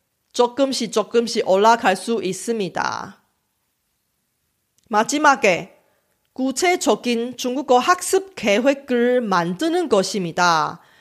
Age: 30-49